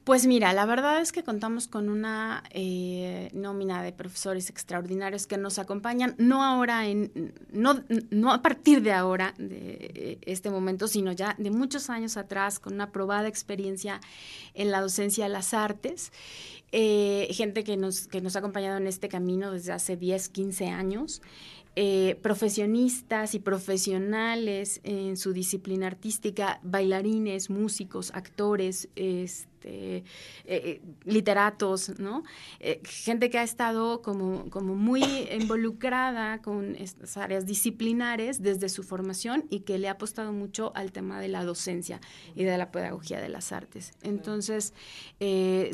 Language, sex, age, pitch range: Spanish, female, 30-49, 190-225 Hz